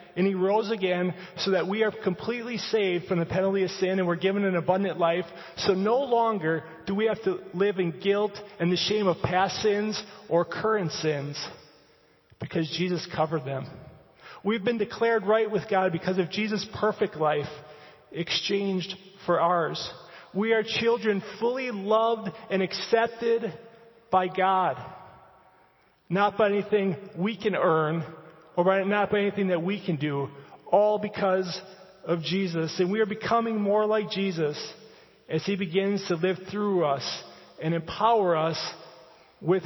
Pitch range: 170-210 Hz